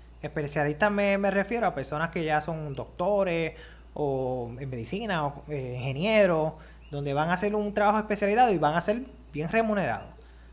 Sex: male